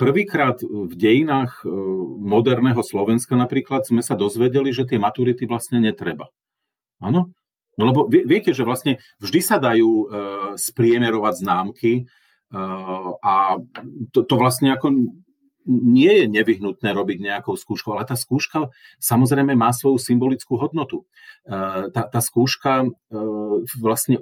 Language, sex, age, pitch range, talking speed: Slovak, male, 40-59, 110-135 Hz, 115 wpm